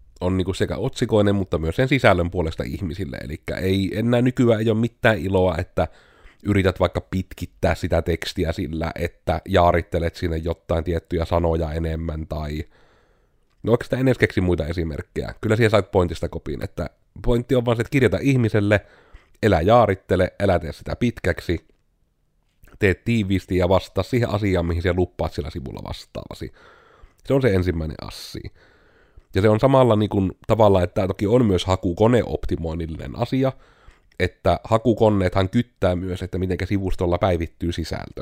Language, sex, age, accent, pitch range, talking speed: Finnish, male, 30-49, native, 85-110 Hz, 150 wpm